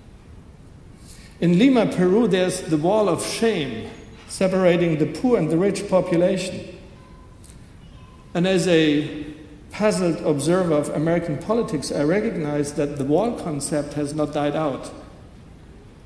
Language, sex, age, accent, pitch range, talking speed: English, male, 60-79, German, 145-180 Hz, 125 wpm